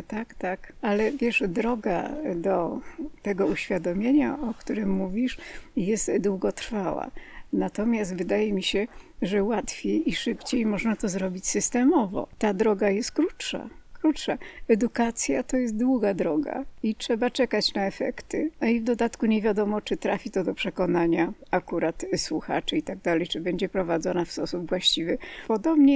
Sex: female